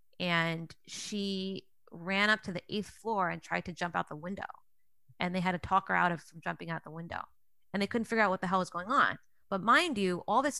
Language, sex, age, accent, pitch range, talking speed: English, female, 20-39, American, 175-215 Hz, 245 wpm